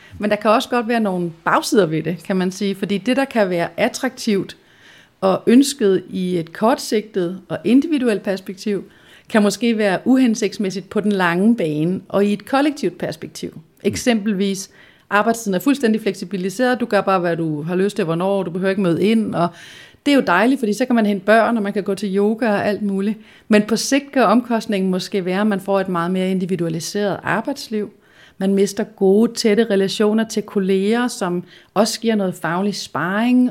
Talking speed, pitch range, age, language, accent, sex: 190 wpm, 185-225 Hz, 30-49, Danish, native, female